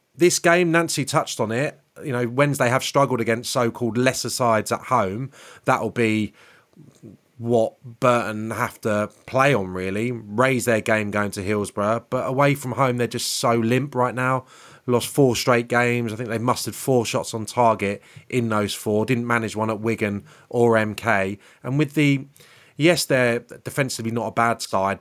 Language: English